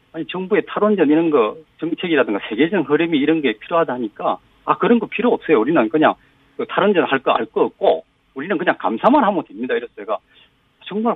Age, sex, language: 40-59, male, Korean